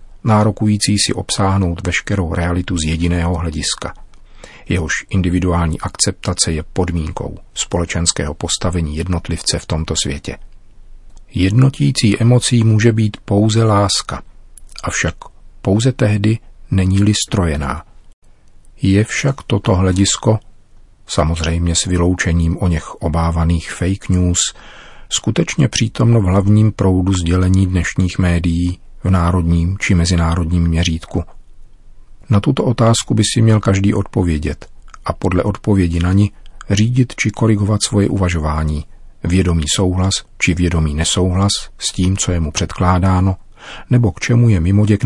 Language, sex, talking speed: Czech, male, 120 wpm